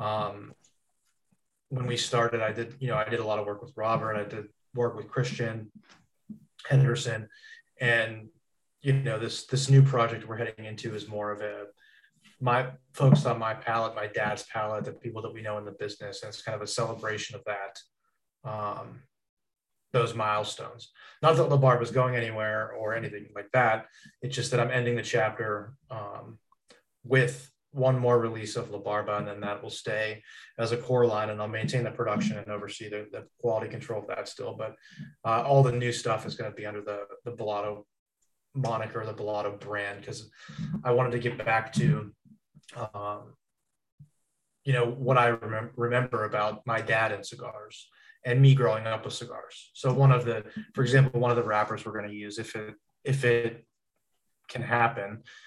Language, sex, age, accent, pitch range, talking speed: English, male, 20-39, American, 105-125 Hz, 190 wpm